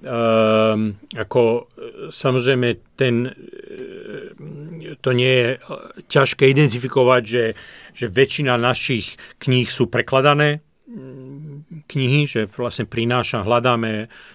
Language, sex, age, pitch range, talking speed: Slovak, male, 40-59, 115-140 Hz, 90 wpm